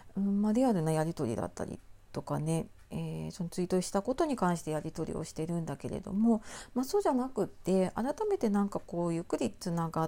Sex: female